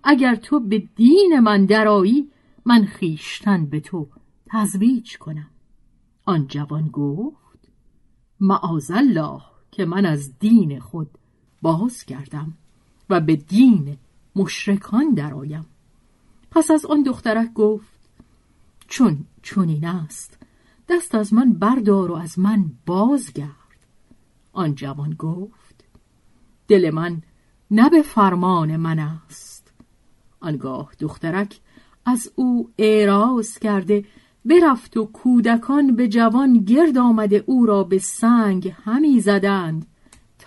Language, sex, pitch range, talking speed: Persian, female, 170-235 Hz, 110 wpm